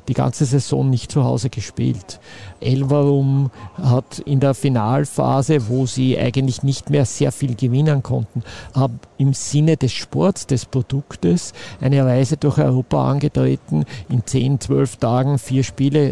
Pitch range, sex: 120-140 Hz, male